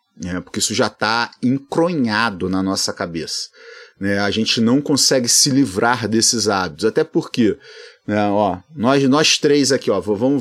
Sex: male